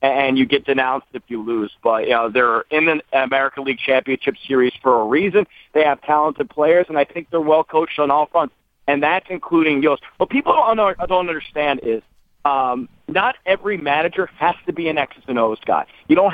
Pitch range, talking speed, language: 135-180 Hz, 205 wpm, English